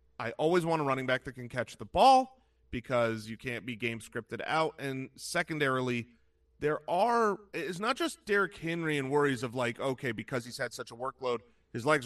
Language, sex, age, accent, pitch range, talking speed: English, male, 30-49, American, 125-170 Hz, 205 wpm